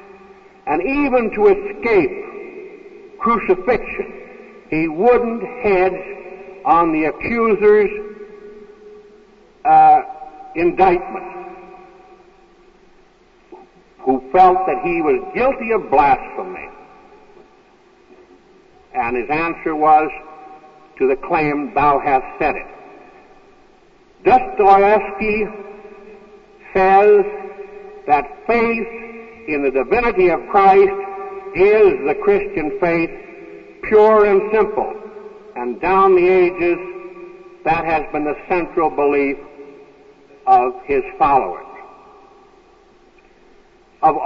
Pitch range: 235-395 Hz